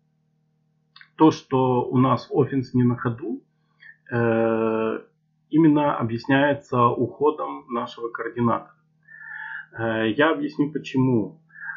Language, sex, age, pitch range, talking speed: Russian, male, 40-59, 120-160 Hz, 80 wpm